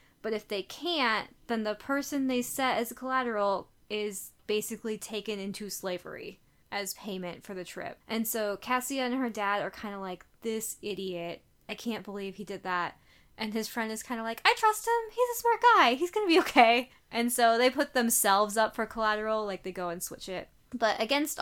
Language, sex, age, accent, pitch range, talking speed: English, female, 10-29, American, 200-260 Hz, 210 wpm